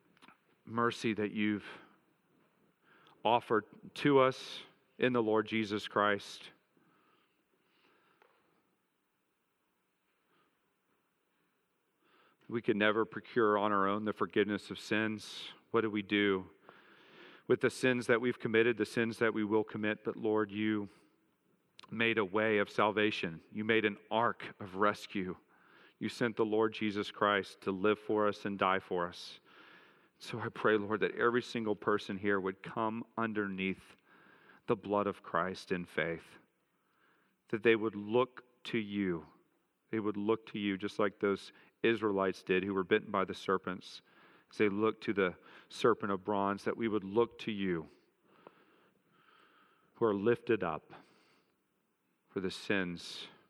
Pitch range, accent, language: 100-110 Hz, American, English